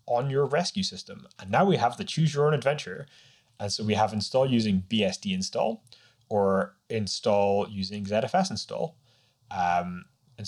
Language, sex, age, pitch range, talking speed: English, male, 20-39, 100-130 Hz, 160 wpm